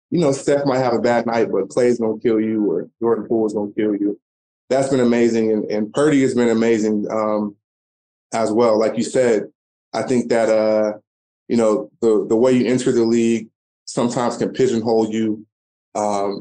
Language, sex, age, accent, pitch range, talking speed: English, male, 20-39, American, 105-115 Hz, 190 wpm